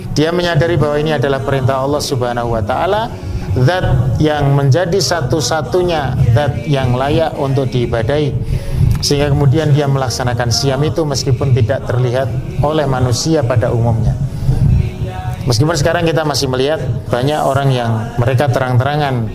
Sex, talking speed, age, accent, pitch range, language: male, 130 wpm, 30-49, native, 125-150 Hz, Indonesian